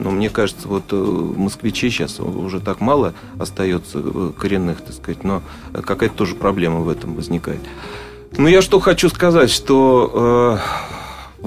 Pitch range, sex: 95-120 Hz, male